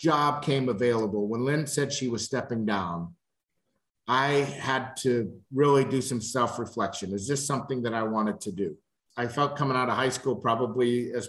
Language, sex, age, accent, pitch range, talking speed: English, male, 50-69, American, 120-145 Hz, 180 wpm